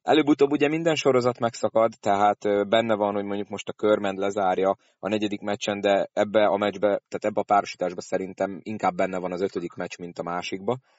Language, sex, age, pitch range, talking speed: Hungarian, male, 30-49, 95-110 Hz, 190 wpm